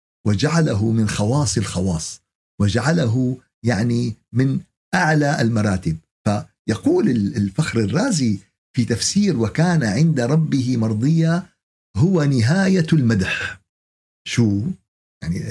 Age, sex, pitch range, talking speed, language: 50-69, male, 100-150 Hz, 90 wpm, Arabic